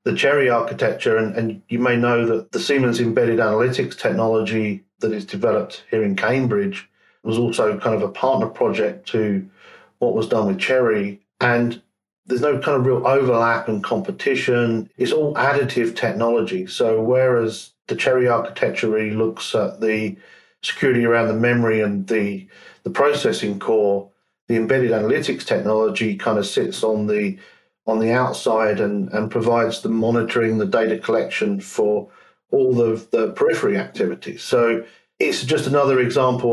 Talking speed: 155 wpm